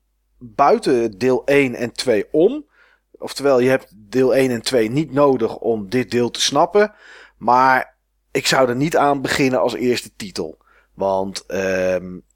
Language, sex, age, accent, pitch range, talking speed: Dutch, male, 40-59, Dutch, 110-140 Hz, 155 wpm